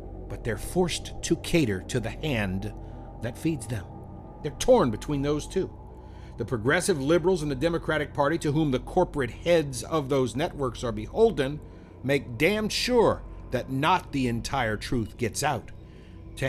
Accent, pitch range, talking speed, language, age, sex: American, 110-160 Hz, 160 wpm, English, 50-69, male